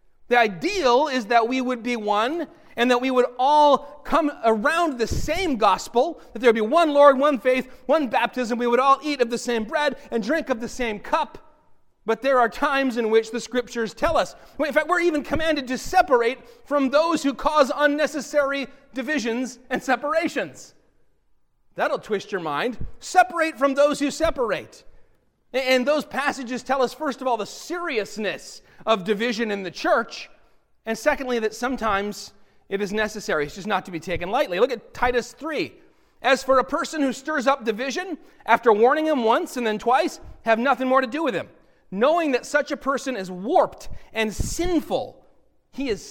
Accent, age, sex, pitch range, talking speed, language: American, 30-49, male, 235-290 Hz, 185 wpm, English